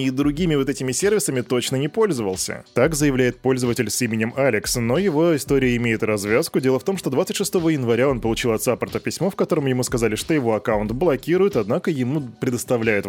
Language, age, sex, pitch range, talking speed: Russian, 20-39, male, 110-140 Hz, 190 wpm